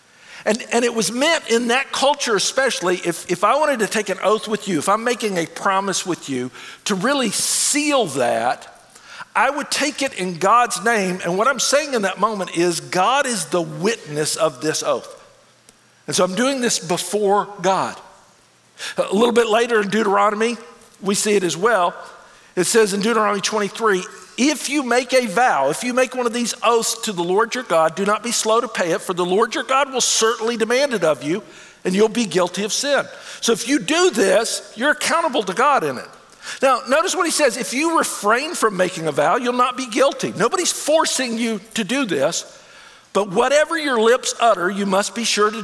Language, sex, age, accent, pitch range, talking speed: English, male, 50-69, American, 185-255 Hz, 210 wpm